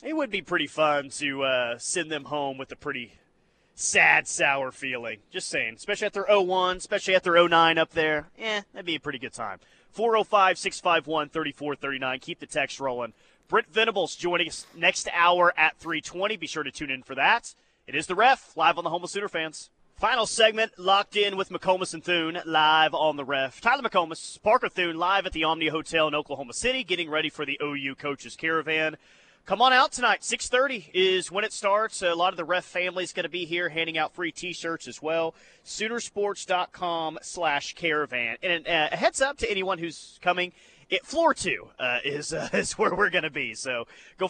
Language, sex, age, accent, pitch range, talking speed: English, male, 30-49, American, 145-190 Hz, 200 wpm